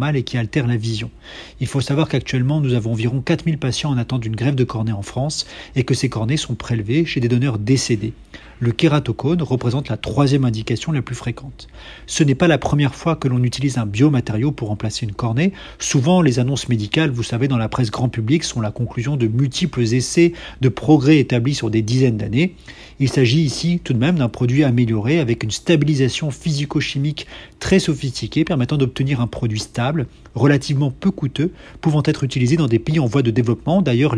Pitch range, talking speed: 120-155 Hz, 200 wpm